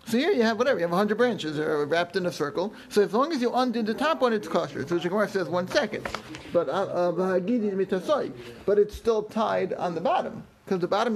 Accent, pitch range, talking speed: American, 185-240 Hz, 225 wpm